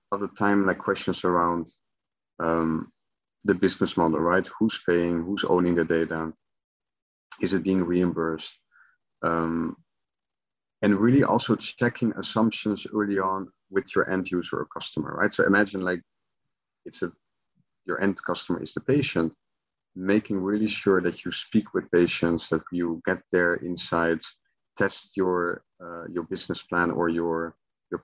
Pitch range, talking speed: 85-100 Hz, 145 wpm